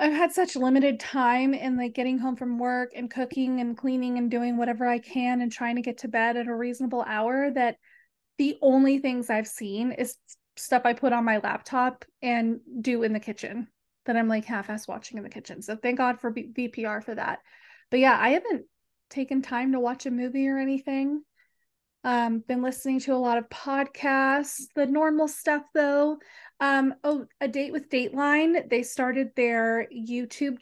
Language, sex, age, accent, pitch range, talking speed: English, female, 20-39, American, 235-275 Hz, 190 wpm